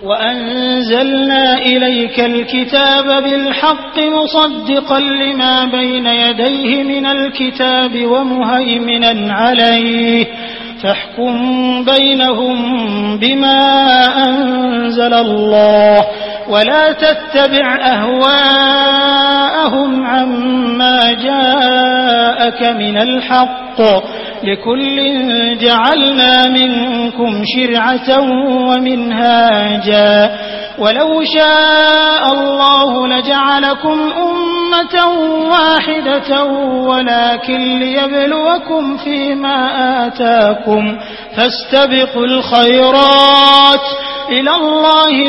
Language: Malayalam